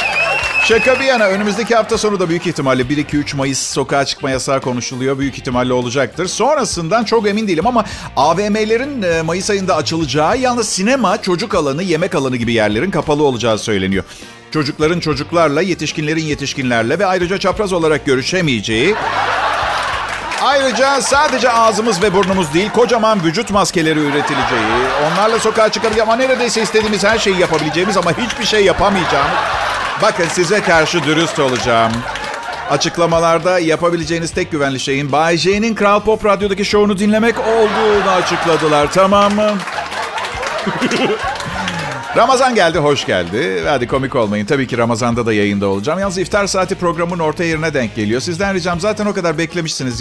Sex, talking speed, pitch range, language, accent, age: male, 140 wpm, 145-210 Hz, Turkish, native, 50-69